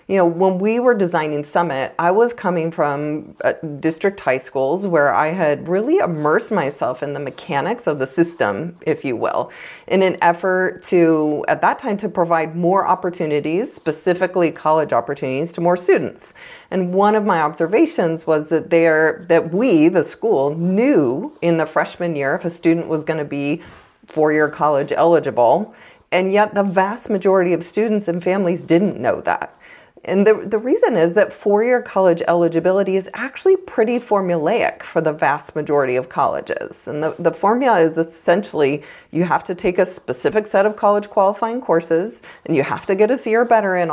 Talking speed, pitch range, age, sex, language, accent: 180 wpm, 165-215 Hz, 40-59, female, English, American